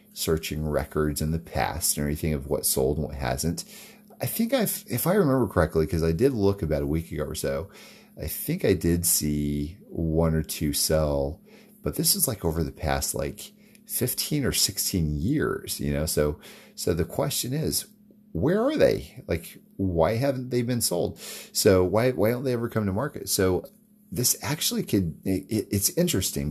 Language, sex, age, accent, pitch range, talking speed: English, male, 30-49, American, 75-110 Hz, 185 wpm